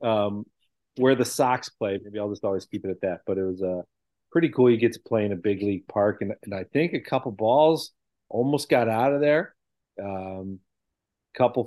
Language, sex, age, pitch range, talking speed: English, male, 40-59, 100-125 Hz, 220 wpm